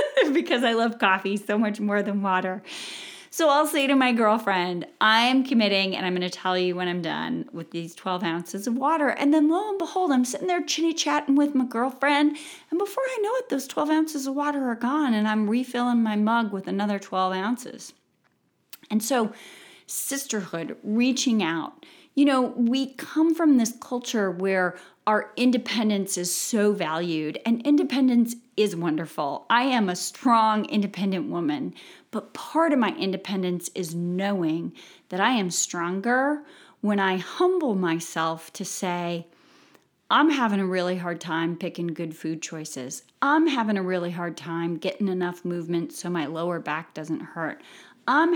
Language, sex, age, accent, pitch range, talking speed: English, female, 30-49, American, 175-265 Hz, 170 wpm